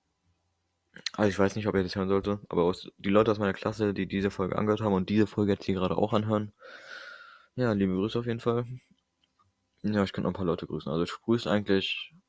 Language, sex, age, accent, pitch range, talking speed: German, male, 20-39, German, 90-105 Hz, 225 wpm